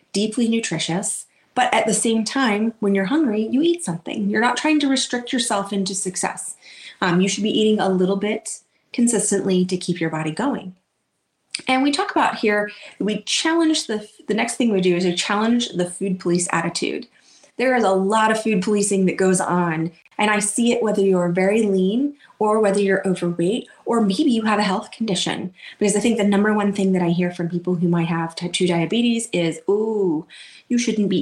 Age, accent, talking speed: 30-49, American, 205 wpm